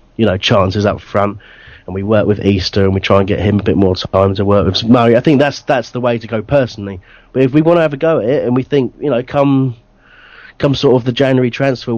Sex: male